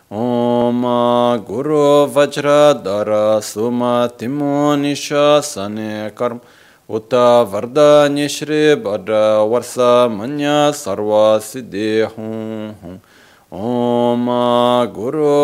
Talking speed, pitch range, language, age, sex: 65 wpm, 105-145 Hz, Italian, 30-49, male